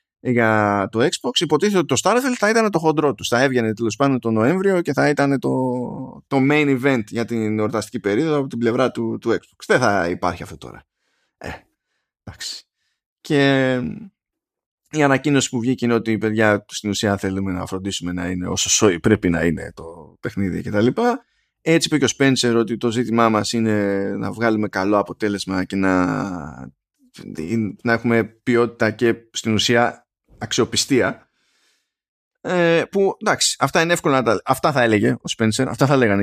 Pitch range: 105-140 Hz